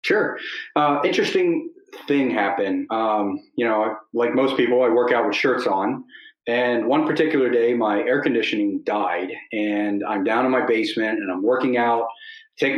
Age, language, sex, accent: 40-59, English, male, American